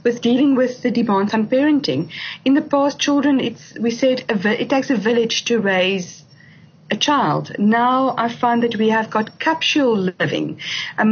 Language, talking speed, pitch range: English, 175 wpm, 200-270 Hz